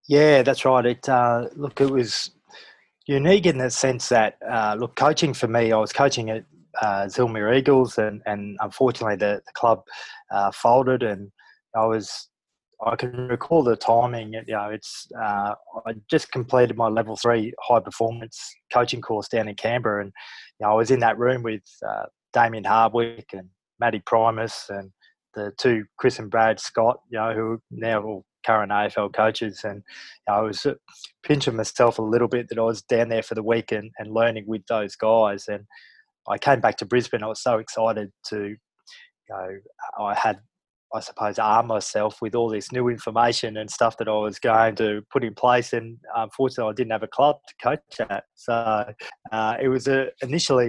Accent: Australian